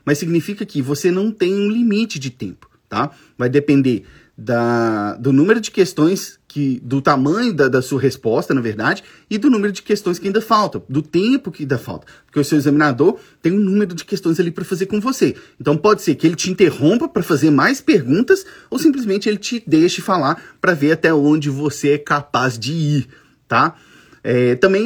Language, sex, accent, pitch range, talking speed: English, male, Brazilian, 130-190 Hz, 200 wpm